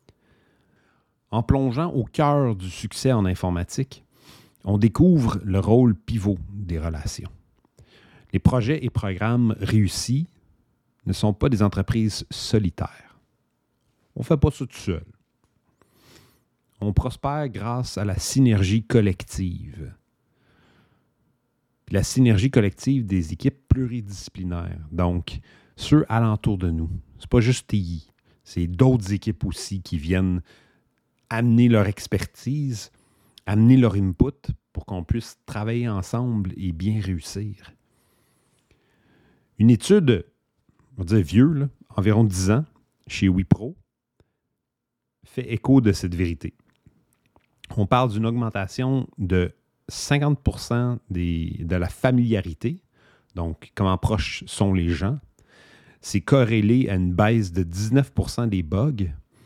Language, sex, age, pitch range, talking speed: English, male, 40-59, 95-125 Hz, 120 wpm